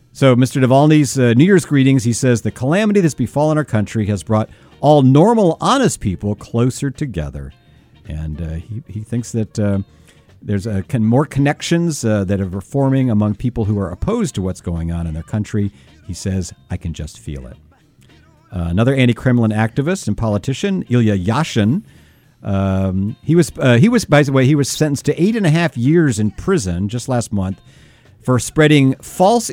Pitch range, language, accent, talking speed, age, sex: 95-135 Hz, English, American, 185 wpm, 50-69, male